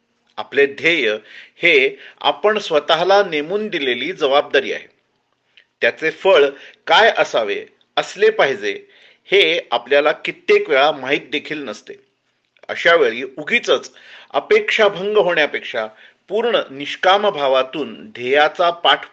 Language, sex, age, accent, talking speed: Marathi, male, 40-59, native, 80 wpm